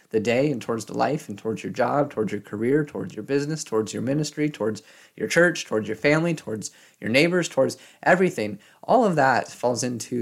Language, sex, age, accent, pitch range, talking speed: English, male, 20-39, American, 110-145 Hz, 205 wpm